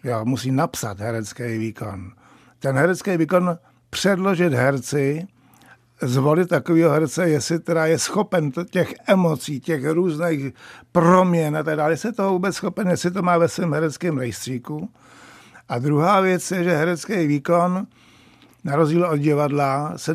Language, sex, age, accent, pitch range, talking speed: Czech, male, 60-79, native, 130-170 Hz, 145 wpm